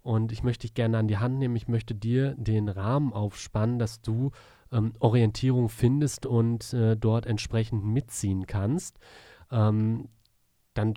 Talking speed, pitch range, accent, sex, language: 155 wpm, 110-130 Hz, German, male, German